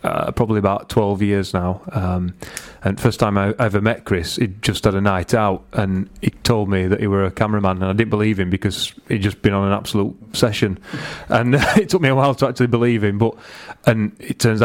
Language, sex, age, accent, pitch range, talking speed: English, male, 30-49, British, 100-115 Hz, 230 wpm